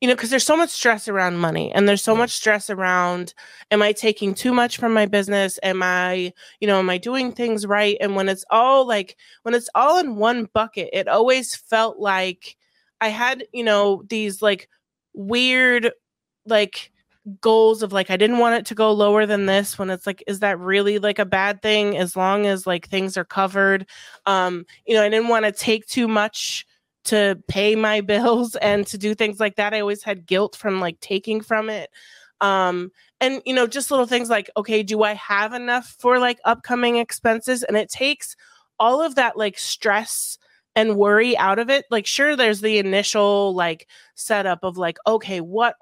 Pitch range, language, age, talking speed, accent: 190-230 Hz, English, 20-39, 200 wpm, American